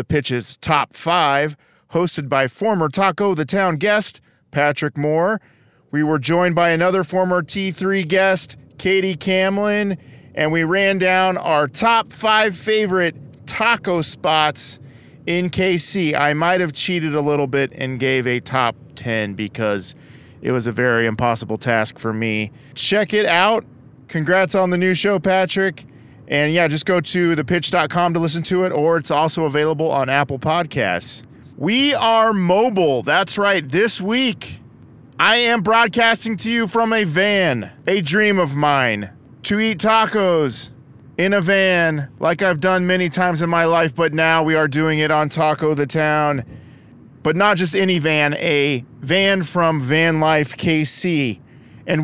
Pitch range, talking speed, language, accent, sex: 135-190 Hz, 155 wpm, English, American, male